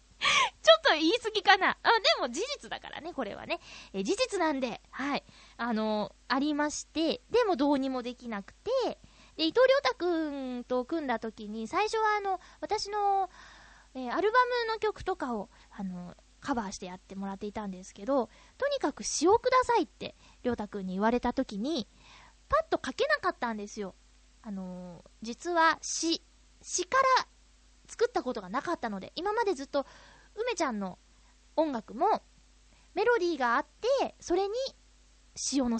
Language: Japanese